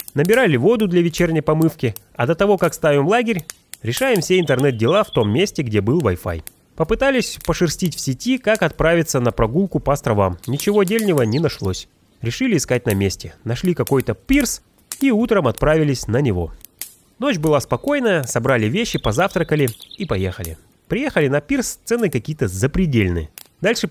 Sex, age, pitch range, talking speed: male, 30-49, 120-190 Hz, 155 wpm